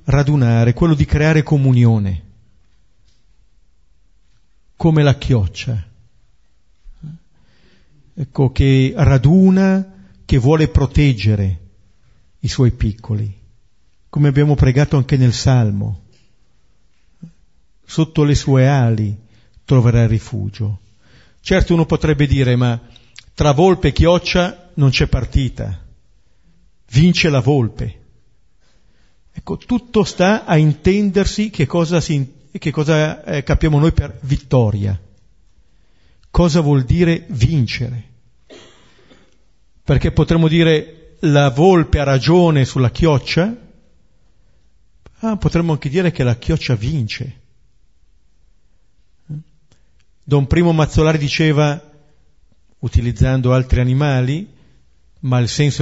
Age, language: 50-69, Italian